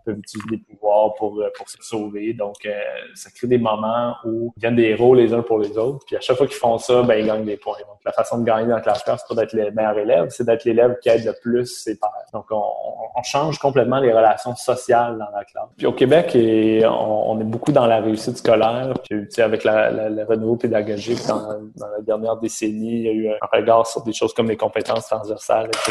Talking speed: 250 wpm